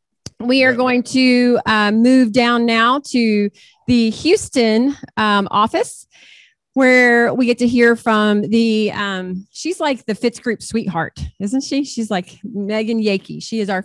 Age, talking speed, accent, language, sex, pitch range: 30-49, 155 wpm, American, English, female, 190-240 Hz